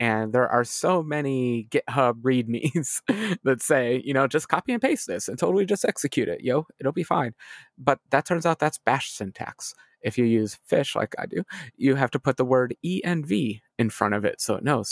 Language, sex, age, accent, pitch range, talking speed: English, male, 30-49, American, 115-145 Hz, 215 wpm